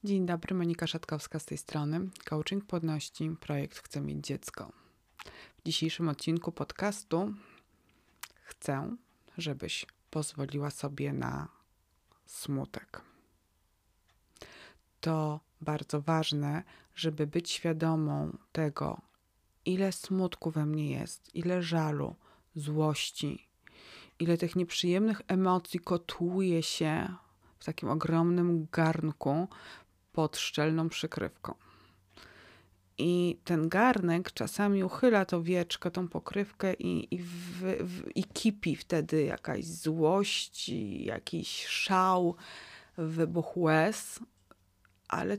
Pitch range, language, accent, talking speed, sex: 155-185 Hz, Polish, native, 100 wpm, female